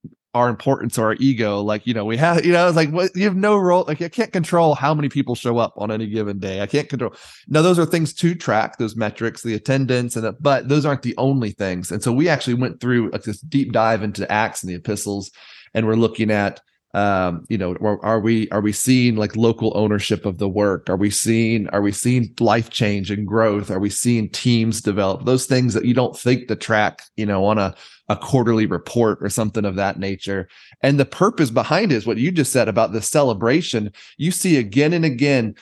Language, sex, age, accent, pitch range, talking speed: English, male, 30-49, American, 110-135 Hz, 235 wpm